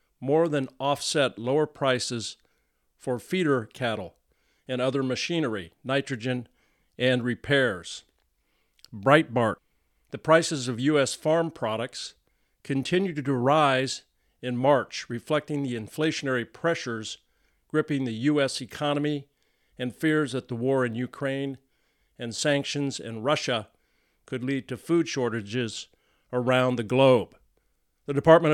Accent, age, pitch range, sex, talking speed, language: American, 50-69, 120-150 Hz, male, 115 wpm, English